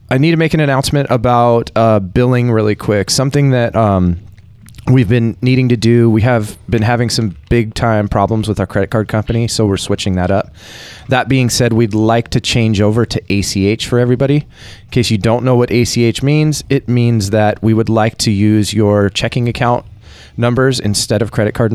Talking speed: 200 wpm